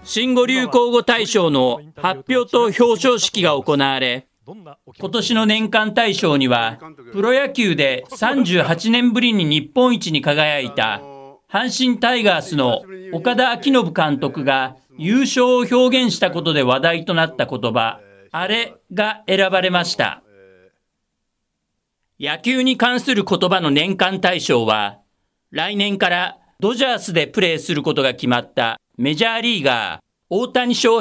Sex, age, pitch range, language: male, 40-59, 155-235 Hz, Japanese